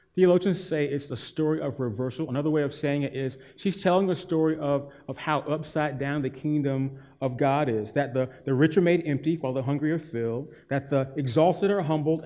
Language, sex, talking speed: English, male, 215 wpm